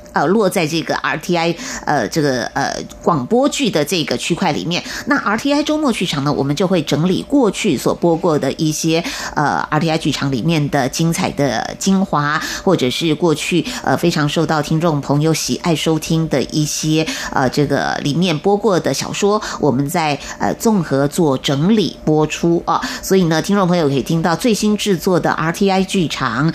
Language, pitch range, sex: Chinese, 145-180 Hz, female